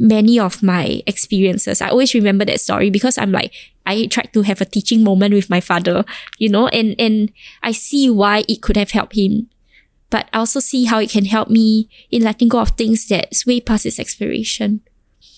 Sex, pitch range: female, 200-230 Hz